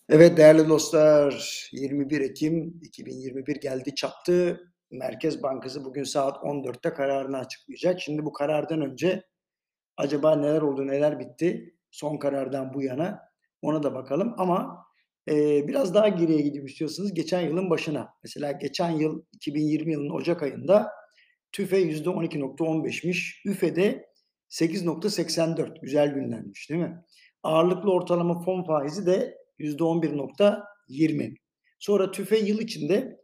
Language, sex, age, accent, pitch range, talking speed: Turkish, male, 50-69, native, 150-185 Hz, 120 wpm